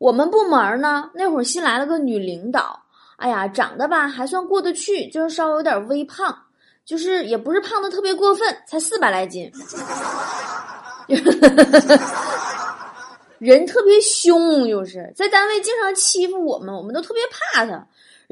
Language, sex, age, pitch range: Chinese, female, 20-39, 250-370 Hz